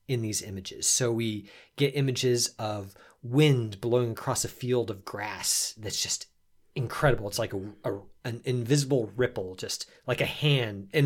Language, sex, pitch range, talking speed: English, male, 105-130 Hz, 165 wpm